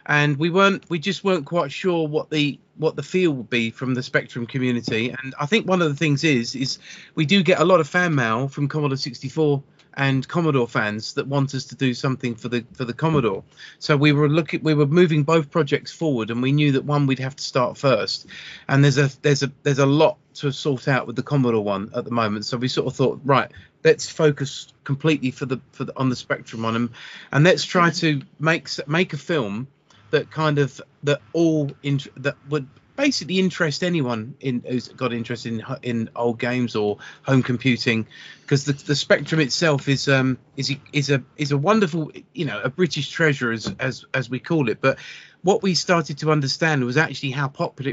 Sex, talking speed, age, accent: male, 215 wpm, 30-49, British